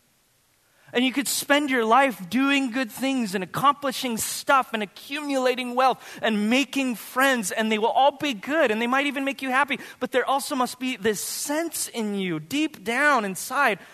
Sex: male